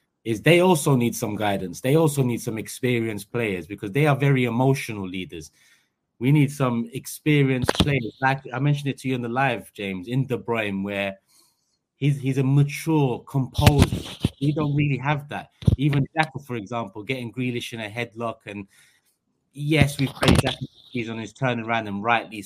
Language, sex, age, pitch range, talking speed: English, male, 20-39, 105-135 Hz, 180 wpm